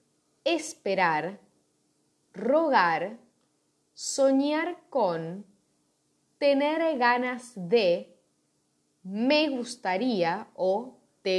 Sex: female